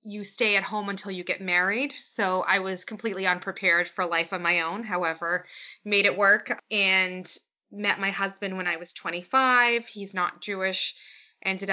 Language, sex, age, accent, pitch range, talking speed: English, female, 20-39, American, 185-220 Hz, 175 wpm